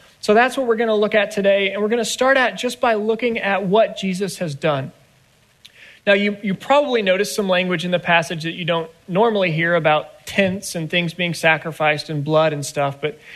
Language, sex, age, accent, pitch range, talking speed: English, male, 30-49, American, 180-225 Hz, 210 wpm